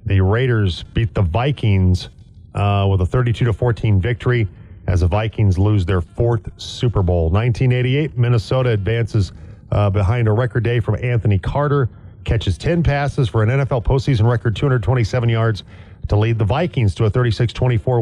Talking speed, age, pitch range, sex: 155 wpm, 40-59, 100-125 Hz, male